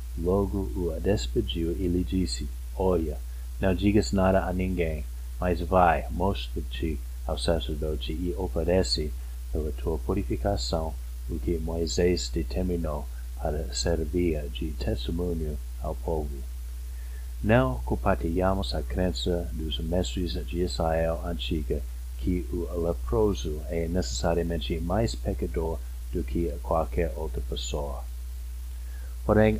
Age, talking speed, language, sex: 50-69, 110 wpm, Portuguese, male